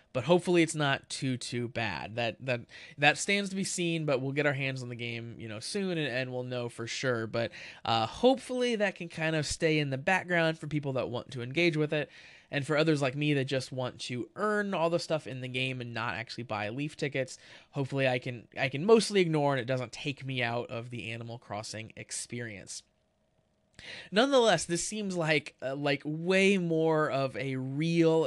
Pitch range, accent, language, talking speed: 125-160 Hz, American, English, 215 wpm